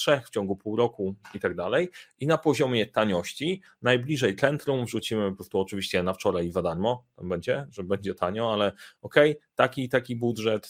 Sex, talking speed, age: male, 185 wpm, 30-49